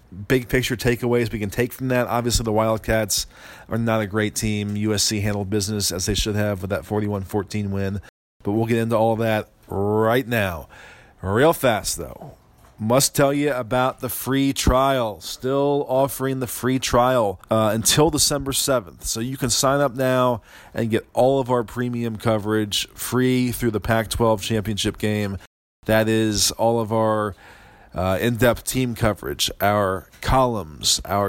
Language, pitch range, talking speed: English, 105-120 Hz, 160 wpm